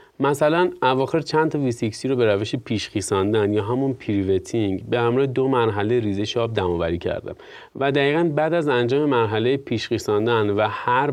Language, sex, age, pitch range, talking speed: Persian, male, 30-49, 105-140 Hz, 155 wpm